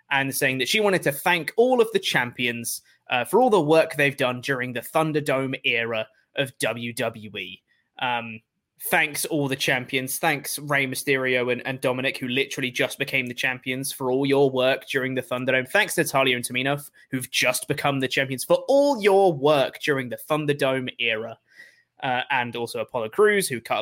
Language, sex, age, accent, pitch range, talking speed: English, male, 20-39, British, 130-175 Hz, 180 wpm